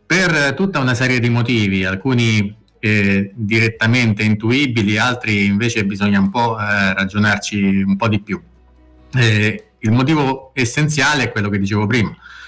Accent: native